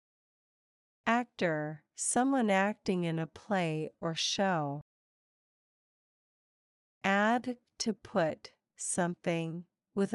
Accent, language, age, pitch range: American, English, 50-69, 170-210 Hz